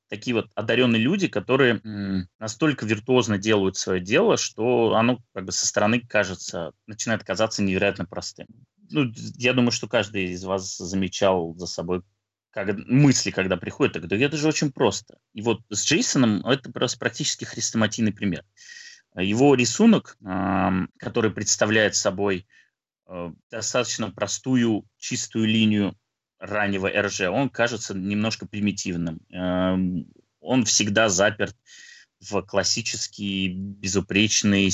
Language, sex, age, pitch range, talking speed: Russian, male, 20-39, 95-115 Hz, 120 wpm